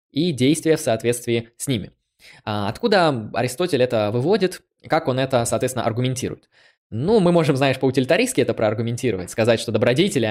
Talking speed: 145 wpm